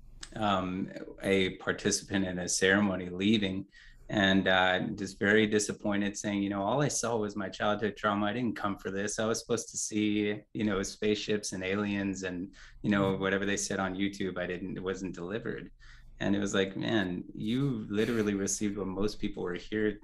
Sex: male